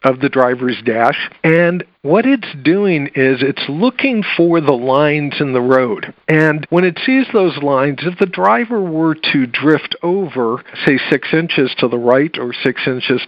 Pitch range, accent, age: 130-185 Hz, American, 50-69